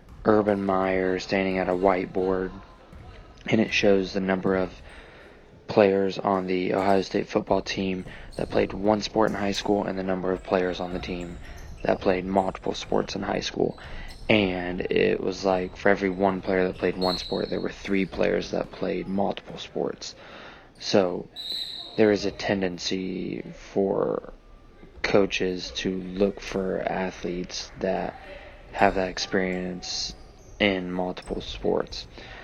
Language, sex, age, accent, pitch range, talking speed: English, male, 20-39, American, 90-100 Hz, 145 wpm